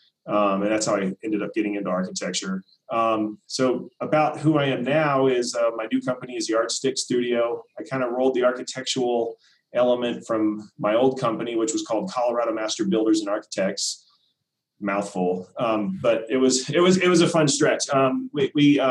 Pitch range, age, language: 110-135 Hz, 30-49, English